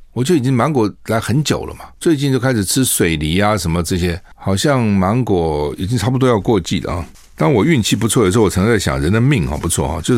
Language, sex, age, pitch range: Chinese, male, 60-79, 85-120 Hz